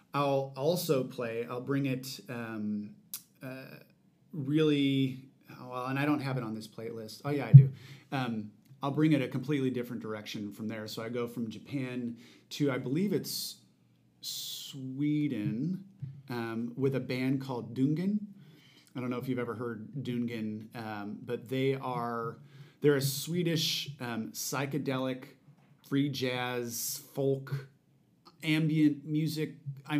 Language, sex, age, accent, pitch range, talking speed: English, male, 30-49, American, 115-140 Hz, 140 wpm